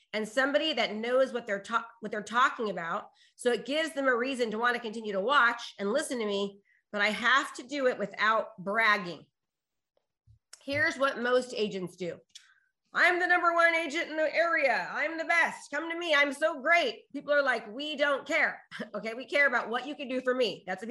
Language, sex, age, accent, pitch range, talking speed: English, female, 30-49, American, 210-280 Hz, 210 wpm